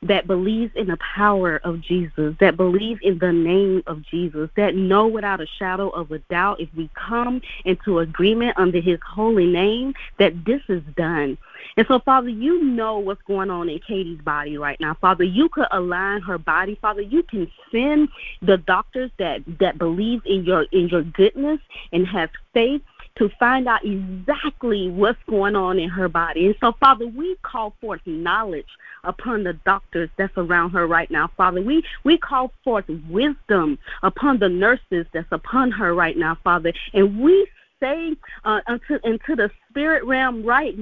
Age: 30-49